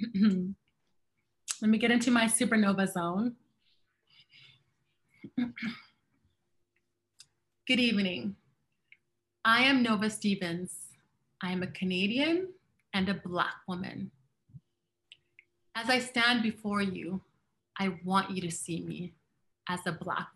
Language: English